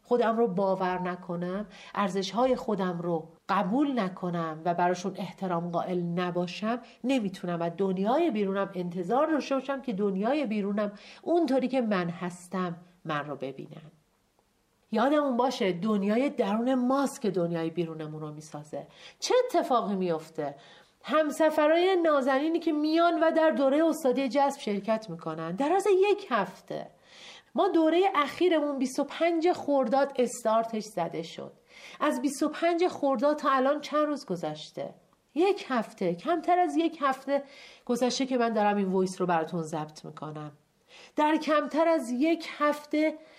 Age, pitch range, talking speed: 40-59, 185-300 Hz, 130 wpm